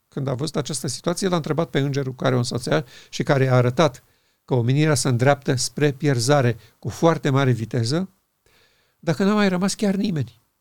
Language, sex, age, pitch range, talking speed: Romanian, male, 50-69, 130-165 Hz, 190 wpm